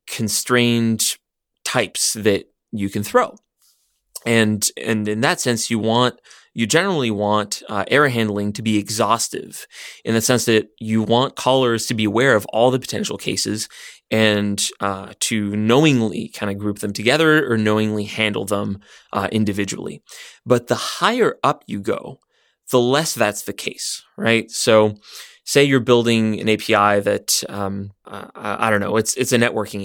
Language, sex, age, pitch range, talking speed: English, male, 20-39, 105-125 Hz, 160 wpm